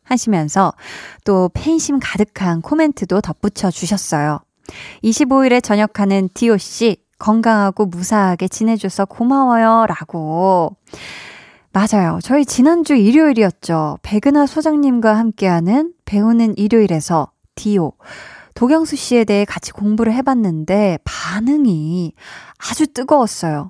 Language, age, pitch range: Korean, 20-39, 190-270 Hz